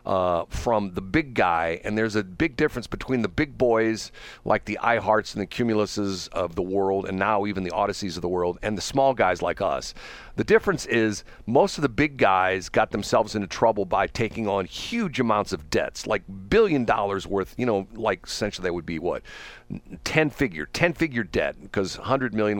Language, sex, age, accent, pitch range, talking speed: English, male, 50-69, American, 95-125 Hz, 195 wpm